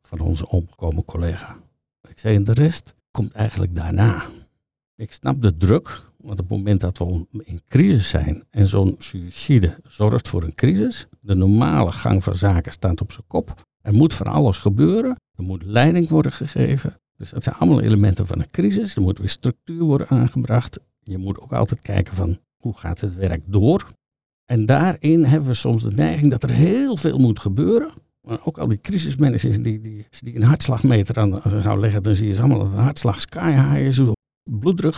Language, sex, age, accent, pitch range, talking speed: Dutch, male, 50-69, Dutch, 100-135 Hz, 195 wpm